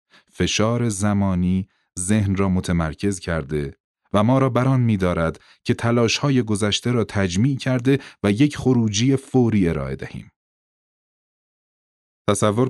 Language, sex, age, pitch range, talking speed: Persian, male, 30-49, 90-120 Hz, 120 wpm